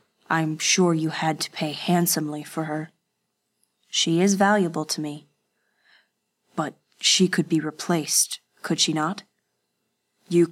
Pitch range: 150-175 Hz